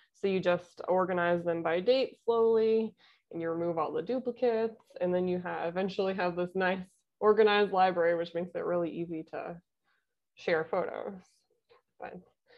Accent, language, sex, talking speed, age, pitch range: American, English, female, 155 wpm, 20-39, 170-205 Hz